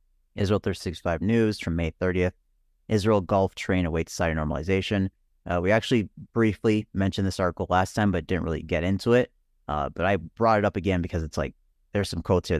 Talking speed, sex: 195 wpm, male